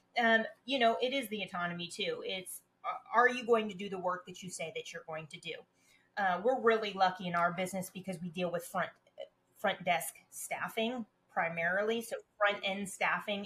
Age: 30-49